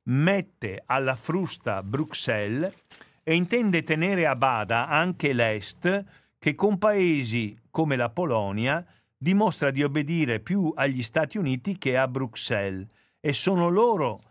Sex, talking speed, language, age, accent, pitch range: male, 125 wpm, Italian, 50-69, native, 110-160 Hz